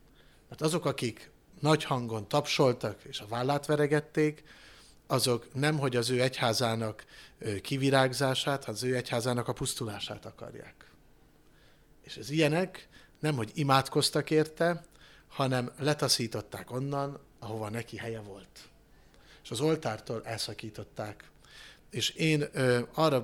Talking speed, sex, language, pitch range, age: 110 wpm, male, Hungarian, 115-145 Hz, 60-79